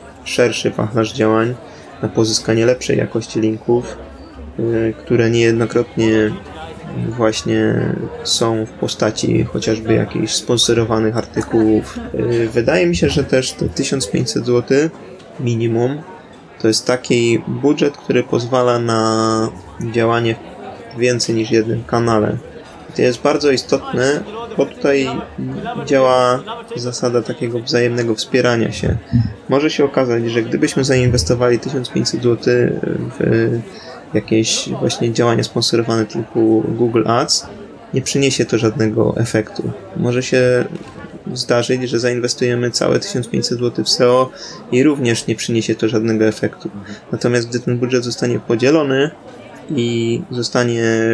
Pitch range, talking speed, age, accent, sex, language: 115-125 Hz, 115 wpm, 20-39, native, male, Polish